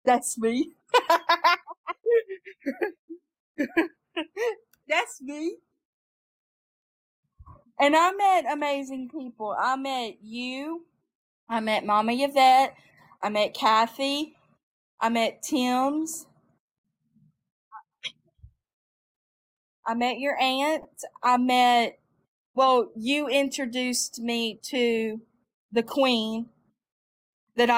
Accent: American